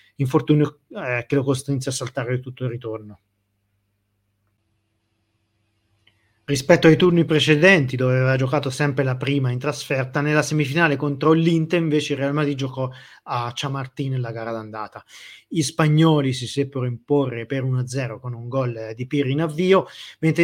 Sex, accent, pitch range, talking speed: male, native, 120-145 Hz, 150 wpm